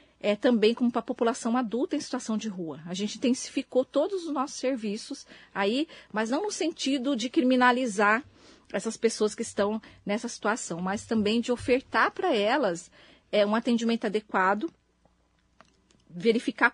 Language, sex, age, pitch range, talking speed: Portuguese, female, 40-59, 210-270 Hz, 145 wpm